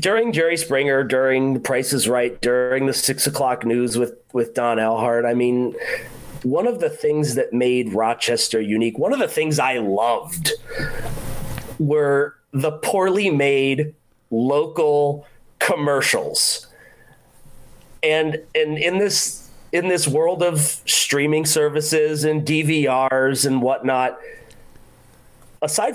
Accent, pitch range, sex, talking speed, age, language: American, 130-165 Hz, male, 125 wpm, 30-49, English